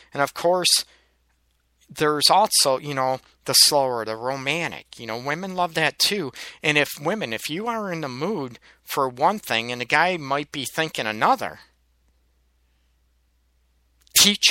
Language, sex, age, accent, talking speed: English, male, 50-69, American, 155 wpm